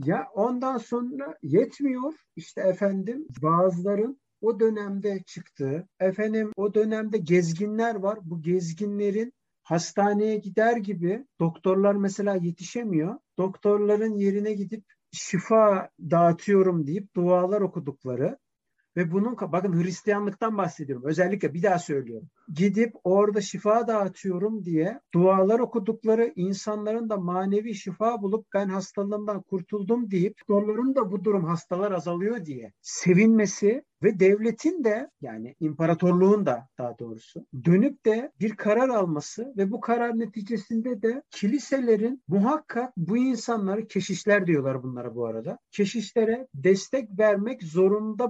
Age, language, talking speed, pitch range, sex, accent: 50-69, Turkish, 120 wpm, 180-225 Hz, male, native